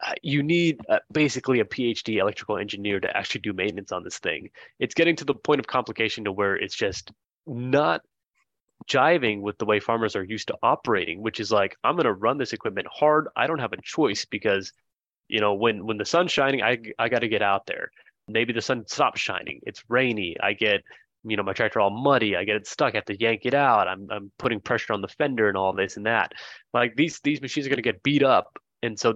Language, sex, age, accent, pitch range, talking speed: English, male, 20-39, American, 105-145 Hz, 235 wpm